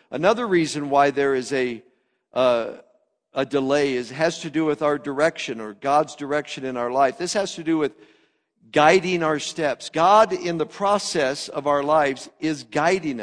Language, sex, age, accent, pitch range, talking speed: English, male, 50-69, American, 140-185 Hz, 175 wpm